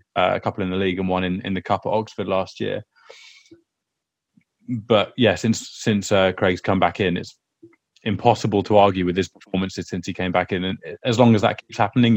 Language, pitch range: English, 95-115 Hz